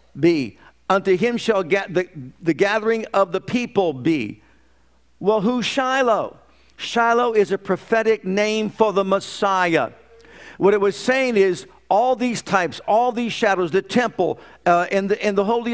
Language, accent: English, American